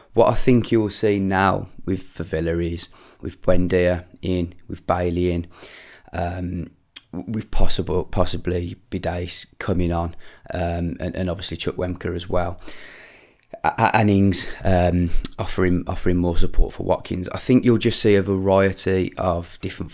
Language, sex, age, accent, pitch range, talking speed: English, male, 20-39, British, 85-95 Hz, 145 wpm